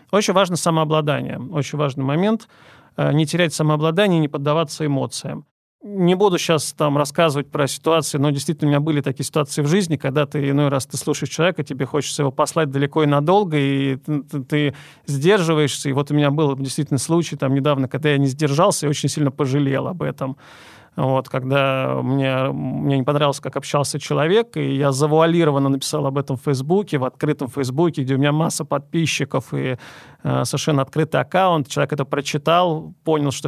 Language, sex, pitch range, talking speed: Russian, male, 140-160 Hz, 185 wpm